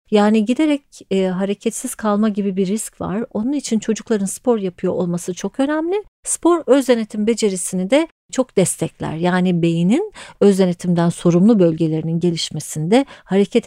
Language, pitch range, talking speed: Turkish, 170-220 Hz, 130 wpm